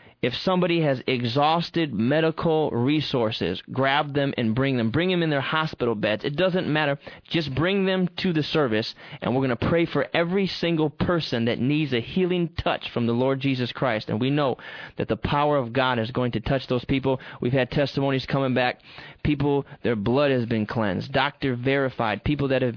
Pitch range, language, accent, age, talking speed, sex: 130-160 Hz, English, American, 20-39, 200 wpm, male